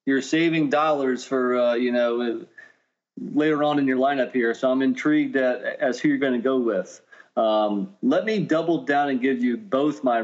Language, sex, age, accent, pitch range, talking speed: English, male, 30-49, American, 120-135 Hz, 200 wpm